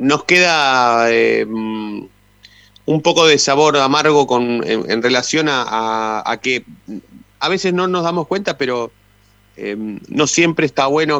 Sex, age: male, 30-49